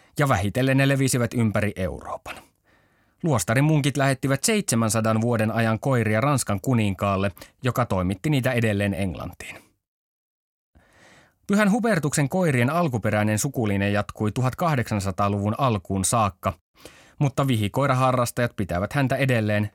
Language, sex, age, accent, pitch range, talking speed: Finnish, male, 30-49, native, 105-140 Hz, 100 wpm